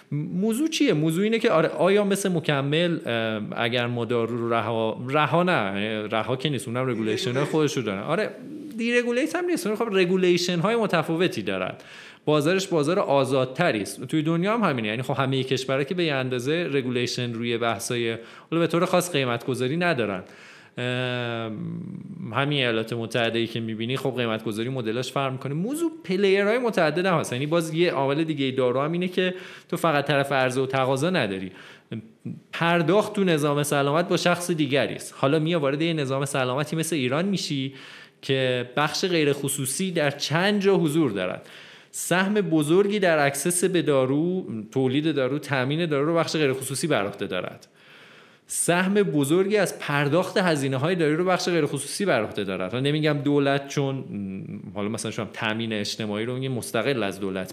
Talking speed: 160 wpm